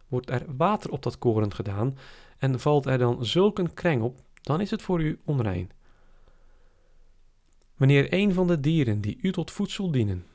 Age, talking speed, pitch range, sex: 40-59, 180 wpm, 100-160 Hz, male